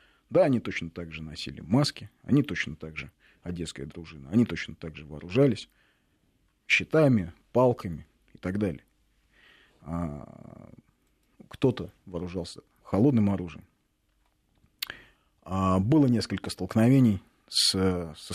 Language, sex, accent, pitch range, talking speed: Russian, male, native, 90-115 Hz, 100 wpm